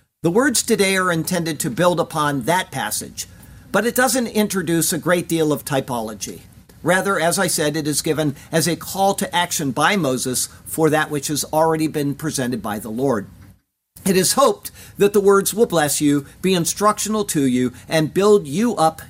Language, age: English, 50-69